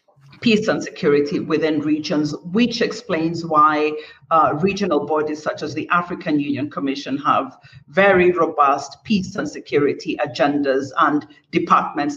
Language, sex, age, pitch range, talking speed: English, female, 50-69, 145-190 Hz, 130 wpm